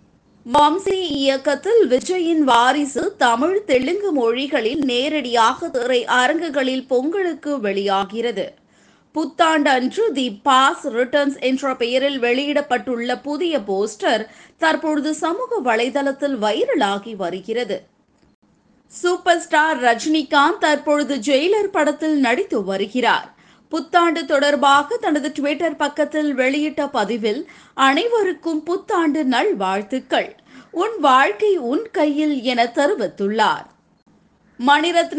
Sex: female